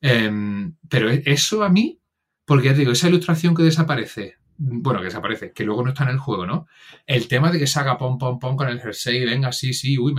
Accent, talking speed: Spanish, 245 wpm